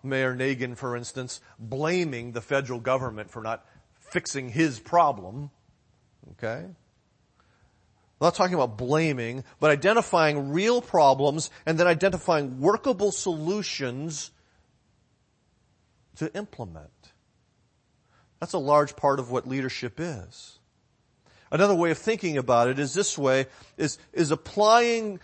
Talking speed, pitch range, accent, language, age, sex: 115 wpm, 110-165 Hz, American, English, 40-59, male